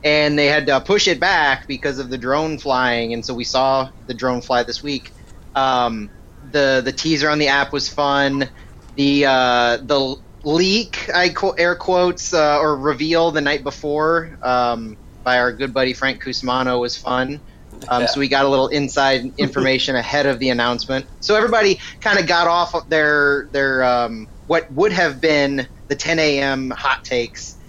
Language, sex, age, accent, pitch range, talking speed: English, male, 30-49, American, 120-150 Hz, 180 wpm